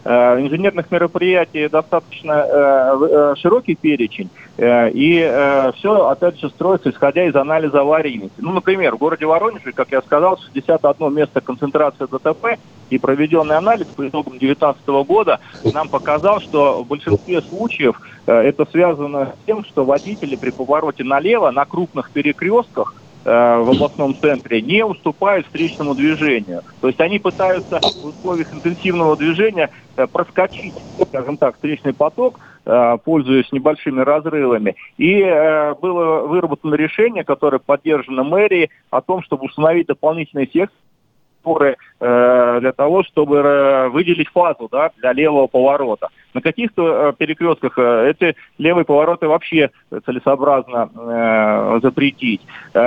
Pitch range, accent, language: 135-170 Hz, native, Russian